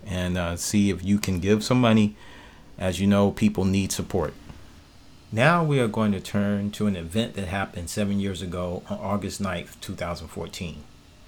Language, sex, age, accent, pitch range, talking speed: English, male, 40-59, American, 85-105 Hz, 175 wpm